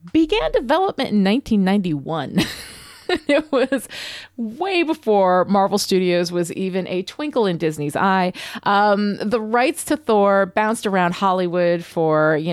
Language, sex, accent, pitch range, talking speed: English, female, American, 160-215 Hz, 130 wpm